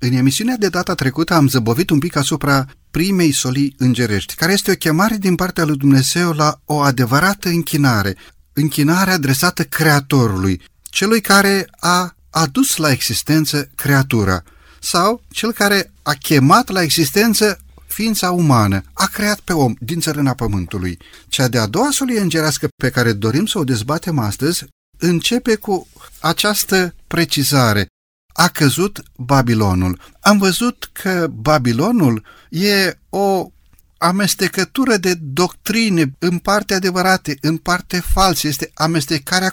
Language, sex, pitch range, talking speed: Romanian, male, 130-185 Hz, 135 wpm